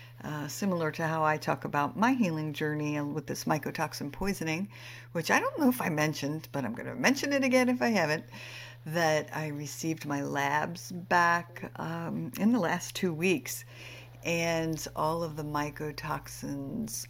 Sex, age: female, 60-79